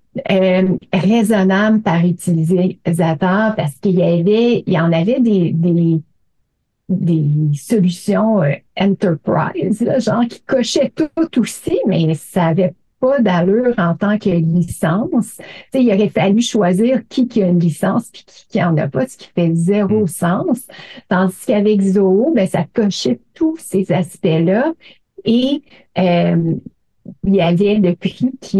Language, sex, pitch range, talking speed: French, female, 180-230 Hz, 155 wpm